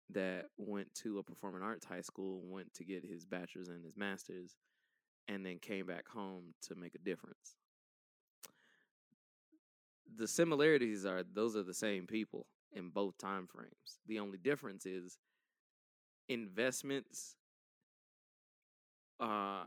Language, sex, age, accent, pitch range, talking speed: English, male, 20-39, American, 95-120 Hz, 130 wpm